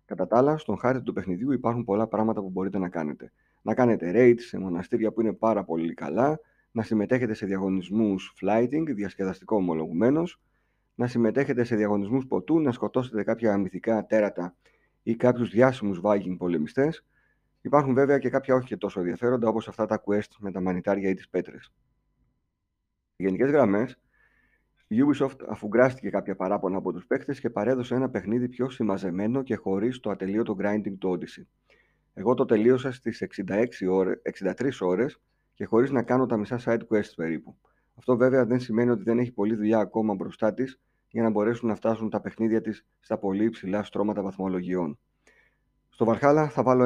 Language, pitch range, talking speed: Greek, 100-125 Hz, 170 wpm